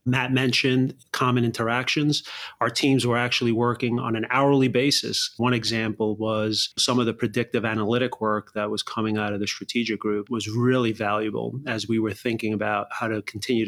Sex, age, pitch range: male, 30-49, 105-120 Hz